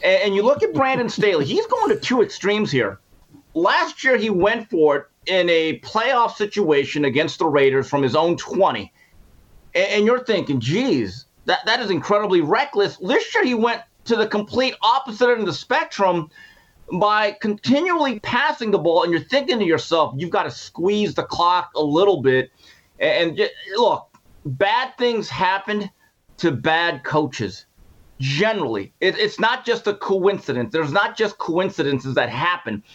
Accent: American